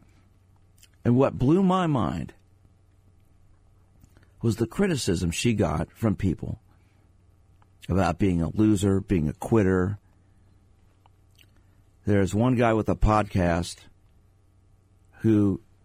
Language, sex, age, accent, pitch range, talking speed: English, male, 50-69, American, 90-100 Hz, 100 wpm